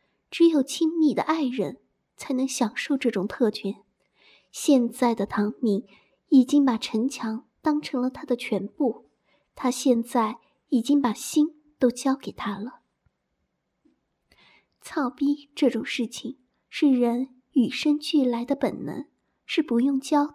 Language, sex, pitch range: Chinese, female, 235-290 Hz